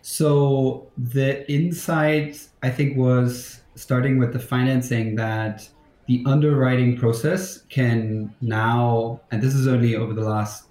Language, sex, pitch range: English, male, 110-130 Hz